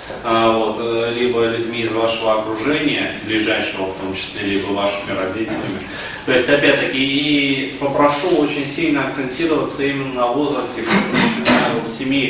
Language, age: Russian, 20-39